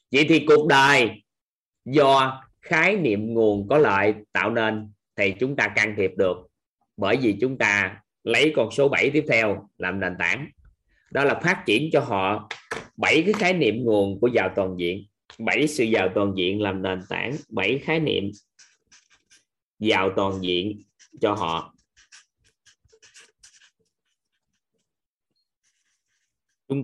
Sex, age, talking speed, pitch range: male, 20-39, 140 wpm, 100-150 Hz